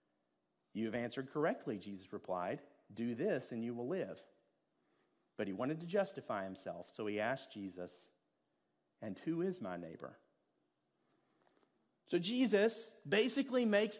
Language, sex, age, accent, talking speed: English, male, 40-59, American, 135 wpm